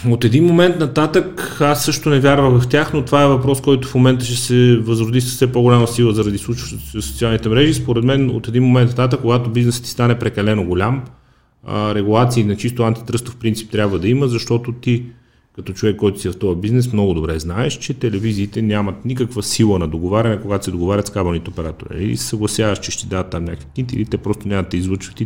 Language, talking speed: Bulgarian, 205 wpm